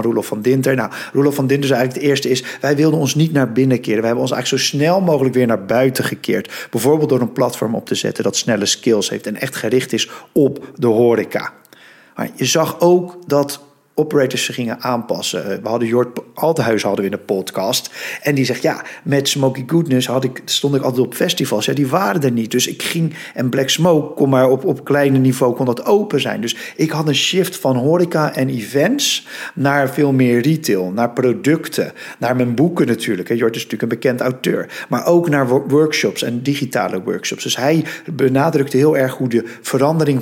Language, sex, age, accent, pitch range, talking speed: Dutch, male, 50-69, Dutch, 120-145 Hz, 210 wpm